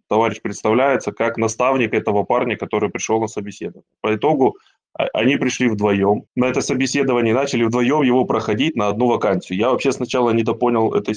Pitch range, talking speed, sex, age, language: 105-125 Hz, 165 wpm, male, 20-39, Russian